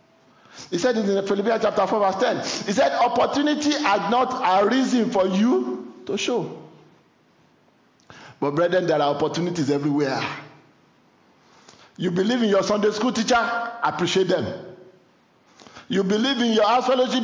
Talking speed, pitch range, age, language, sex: 135 wpm, 190-255 Hz, 50-69, English, male